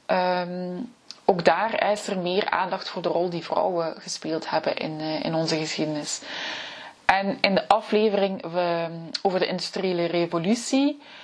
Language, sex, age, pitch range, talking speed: Dutch, female, 20-39, 170-215 Hz, 140 wpm